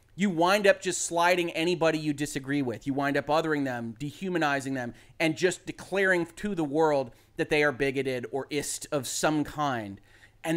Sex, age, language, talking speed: male, 30-49, English, 180 wpm